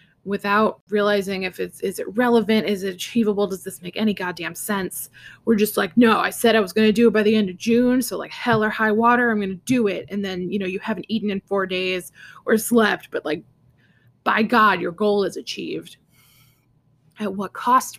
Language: English